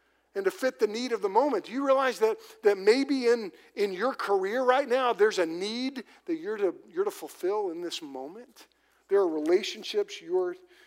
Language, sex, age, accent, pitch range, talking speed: English, male, 50-69, American, 250-380 Hz, 200 wpm